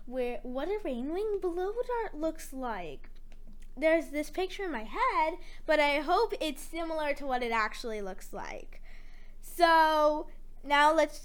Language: English